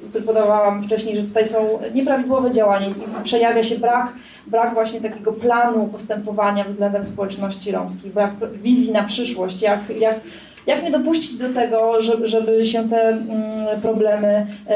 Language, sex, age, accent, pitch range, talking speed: Polish, female, 30-49, native, 220-240 Hz, 135 wpm